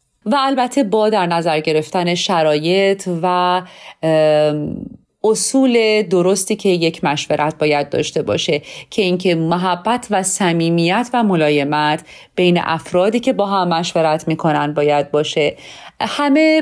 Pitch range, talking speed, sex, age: 165-225 Hz, 120 wpm, female, 30-49